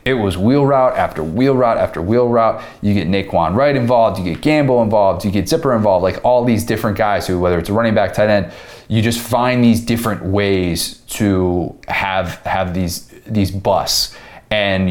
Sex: male